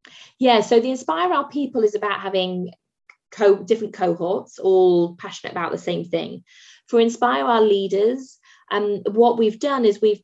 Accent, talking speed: British, 160 wpm